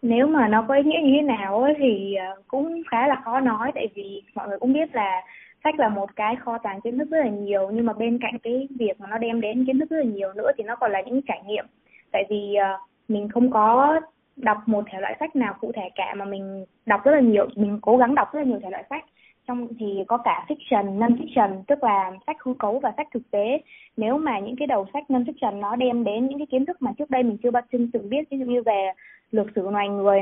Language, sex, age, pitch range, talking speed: Vietnamese, female, 20-39, 205-260 Hz, 265 wpm